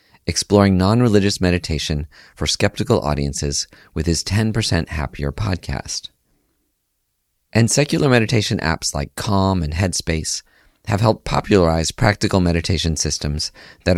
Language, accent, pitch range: English, American, 75-105 Hz